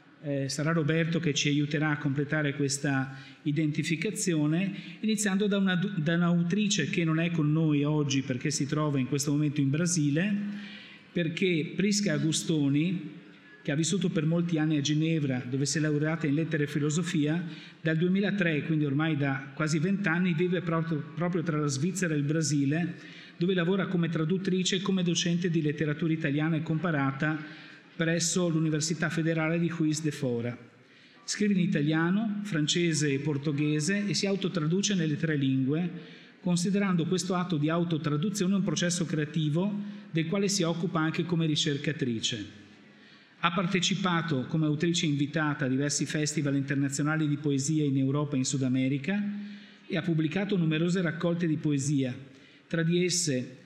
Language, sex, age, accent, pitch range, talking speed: Italian, male, 50-69, native, 150-175 Hz, 155 wpm